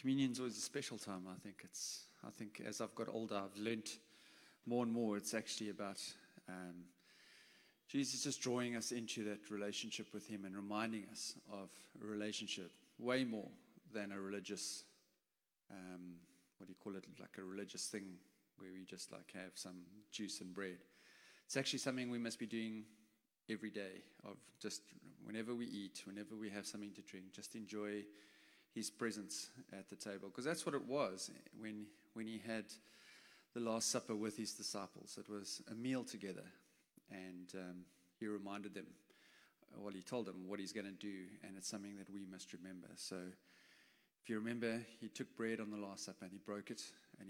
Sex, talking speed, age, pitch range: male, 185 wpm, 30-49, 95-115 Hz